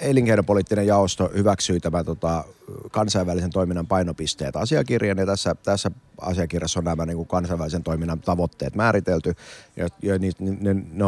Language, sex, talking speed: Finnish, male, 140 wpm